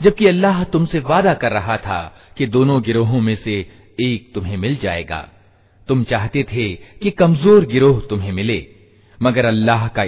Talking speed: 160 wpm